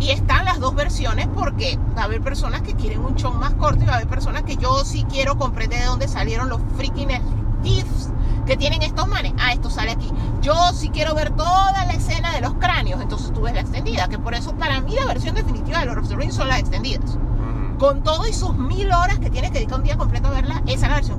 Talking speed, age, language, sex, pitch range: 250 wpm, 40-59, Spanish, female, 105-115 Hz